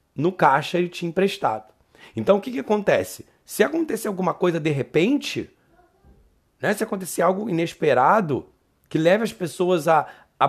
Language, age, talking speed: Portuguese, 40-59, 155 wpm